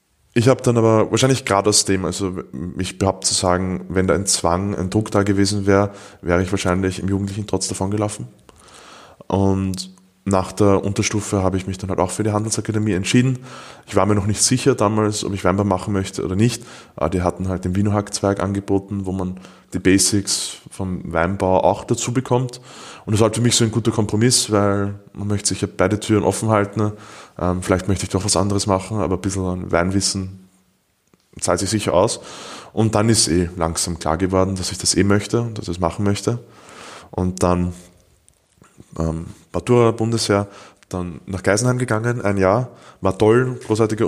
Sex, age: male, 20-39